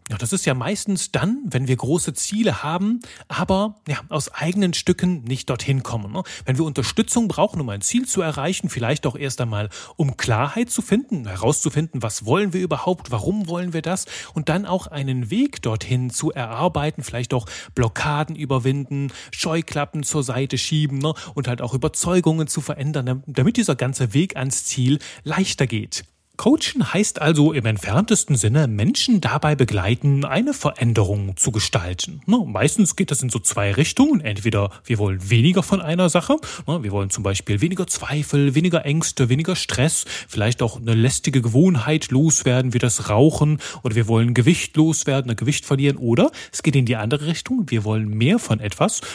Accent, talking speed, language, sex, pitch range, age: German, 175 wpm, German, male, 120-170 Hz, 30-49